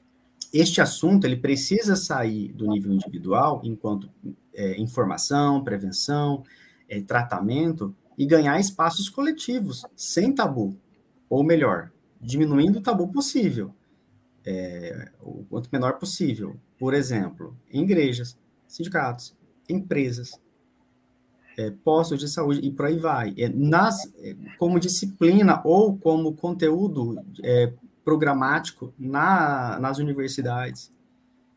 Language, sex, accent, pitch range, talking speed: Portuguese, male, Brazilian, 115-175 Hz, 105 wpm